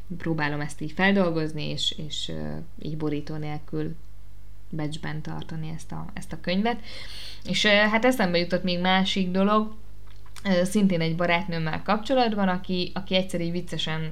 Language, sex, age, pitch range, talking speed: Hungarian, female, 20-39, 155-185 Hz, 130 wpm